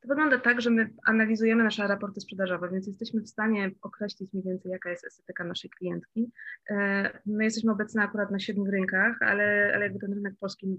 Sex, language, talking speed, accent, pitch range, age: female, Polish, 190 wpm, native, 185-215 Hz, 20-39